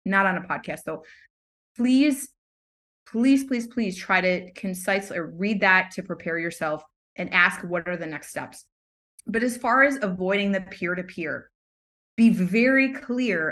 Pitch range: 180-225 Hz